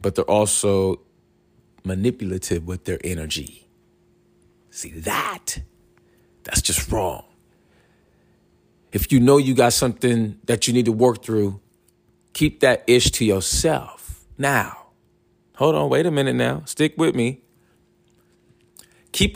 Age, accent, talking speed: 40-59, American, 125 wpm